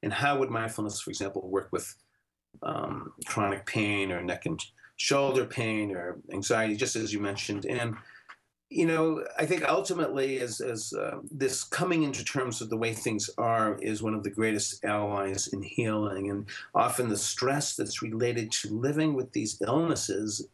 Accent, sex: American, male